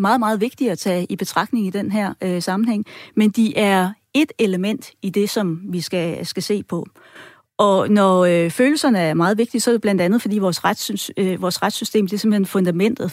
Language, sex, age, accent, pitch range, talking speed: Danish, female, 30-49, native, 185-225 Hz, 215 wpm